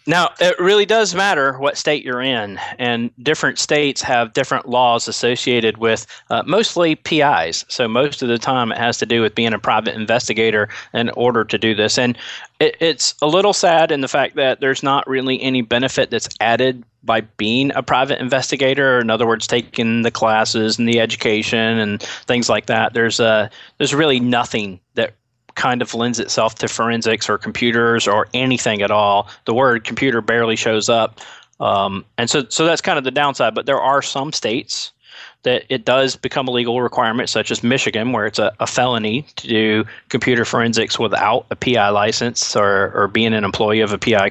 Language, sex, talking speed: English, male, 190 wpm